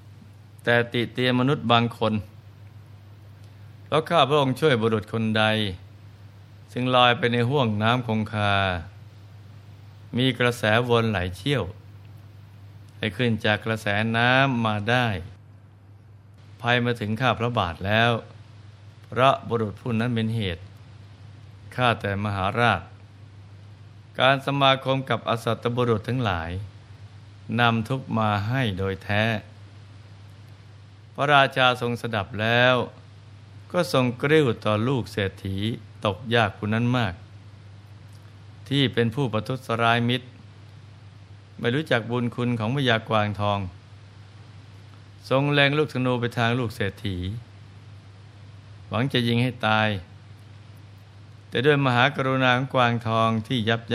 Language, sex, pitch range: Thai, male, 105-120 Hz